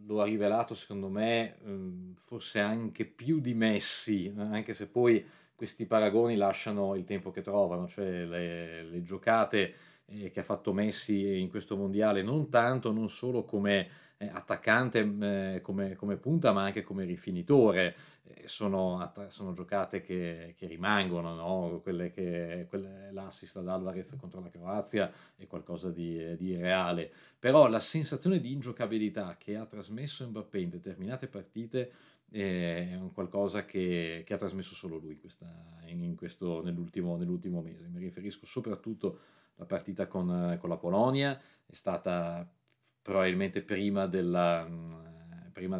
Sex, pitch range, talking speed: male, 90-115 Hz, 140 wpm